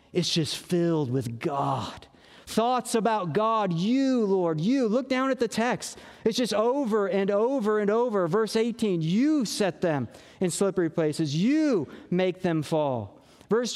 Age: 40-59